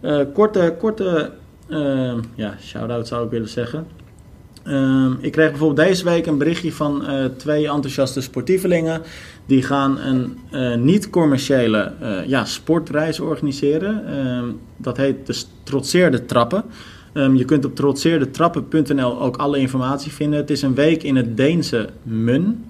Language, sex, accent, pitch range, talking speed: Dutch, male, Dutch, 130-155 Hz, 145 wpm